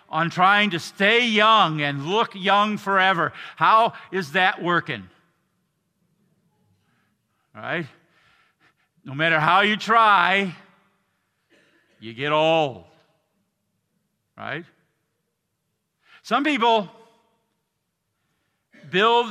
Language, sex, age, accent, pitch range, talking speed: English, male, 50-69, American, 150-205 Hz, 80 wpm